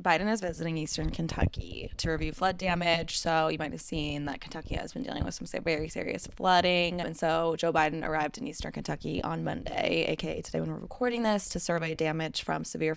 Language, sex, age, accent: English, female, 10-29, American